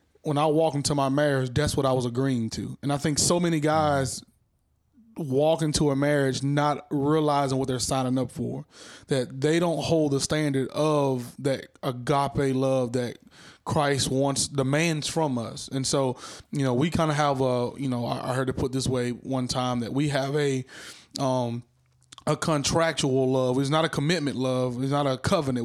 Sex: male